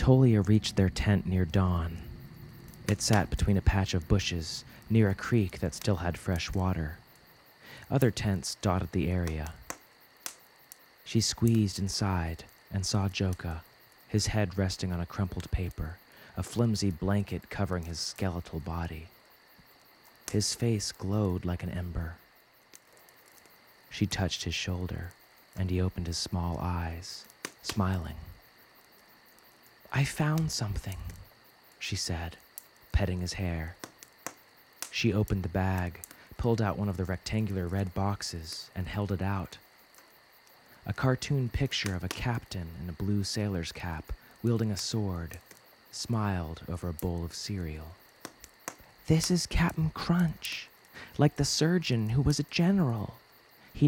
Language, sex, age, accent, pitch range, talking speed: English, male, 30-49, American, 90-110 Hz, 135 wpm